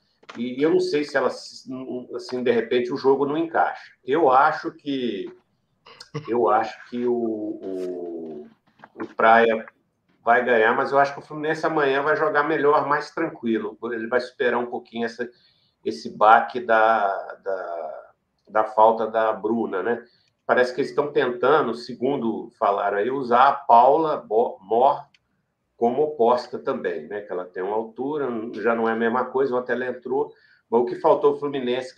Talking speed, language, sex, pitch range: 165 wpm, Portuguese, male, 115-150 Hz